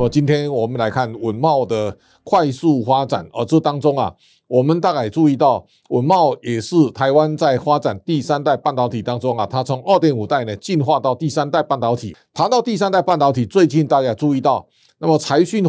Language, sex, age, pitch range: Chinese, male, 50-69, 130-170 Hz